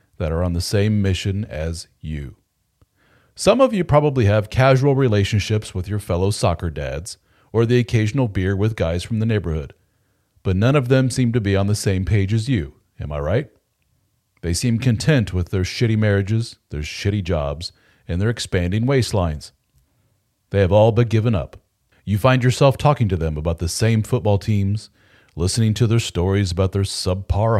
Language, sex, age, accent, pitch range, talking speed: English, male, 40-59, American, 95-120 Hz, 180 wpm